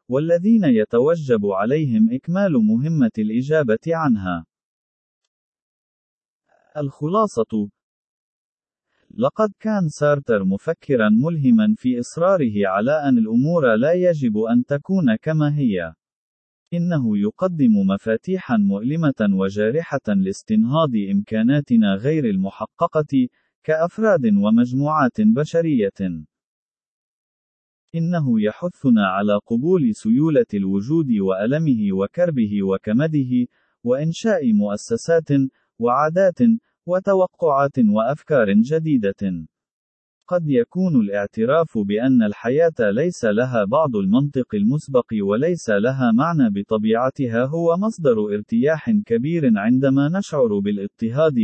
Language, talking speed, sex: Arabic, 85 wpm, male